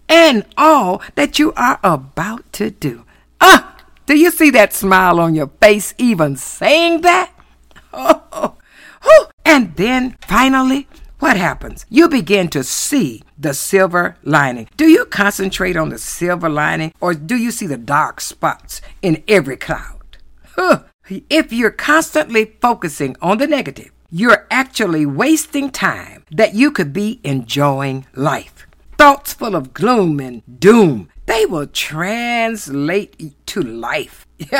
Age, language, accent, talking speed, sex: 60-79, English, American, 135 wpm, female